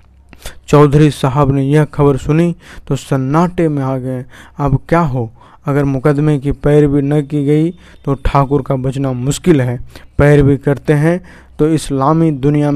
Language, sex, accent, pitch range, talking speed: Hindi, male, native, 130-145 Hz, 155 wpm